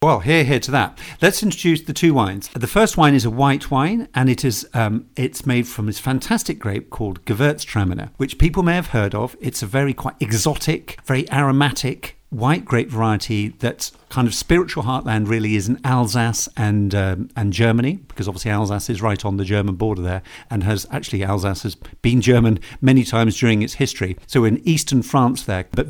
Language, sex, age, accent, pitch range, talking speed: English, male, 50-69, British, 105-135 Hz, 200 wpm